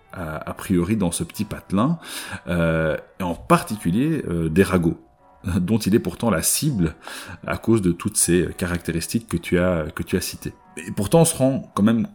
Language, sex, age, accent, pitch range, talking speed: French, male, 30-49, French, 85-110 Hz, 195 wpm